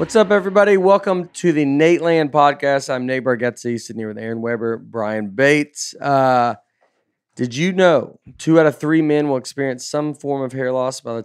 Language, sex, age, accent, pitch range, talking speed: English, male, 30-49, American, 115-145 Hz, 195 wpm